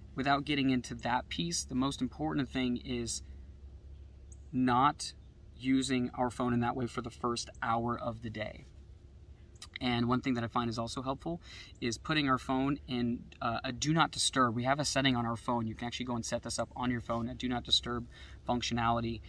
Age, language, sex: 20-39, English, male